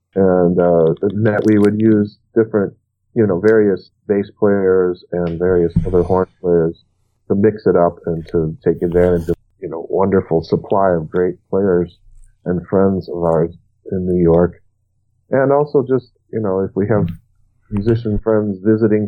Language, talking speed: English, 160 wpm